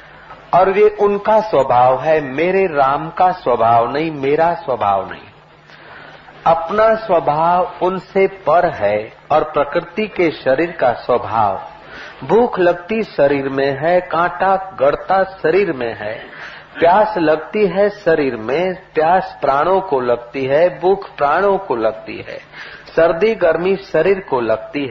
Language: Hindi